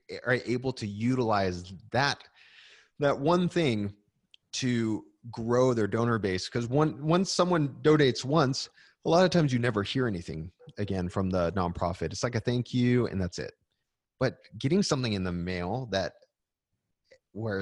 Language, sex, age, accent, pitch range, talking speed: English, male, 30-49, American, 90-120 Hz, 160 wpm